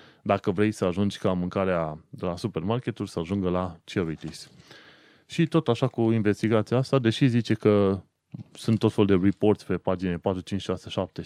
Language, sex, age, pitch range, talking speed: Romanian, male, 20-39, 95-120 Hz, 160 wpm